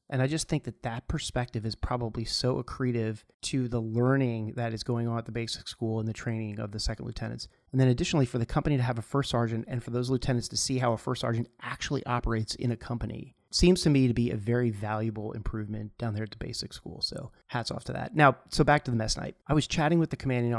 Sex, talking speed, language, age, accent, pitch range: male, 255 wpm, English, 30-49, American, 115-135 Hz